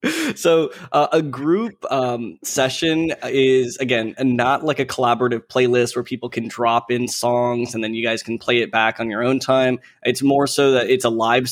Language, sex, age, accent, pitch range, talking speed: English, male, 20-39, American, 115-130 Hz, 200 wpm